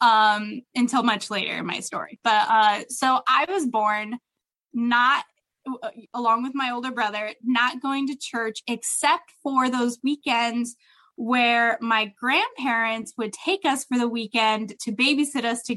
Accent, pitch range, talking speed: American, 220-275 Hz, 150 wpm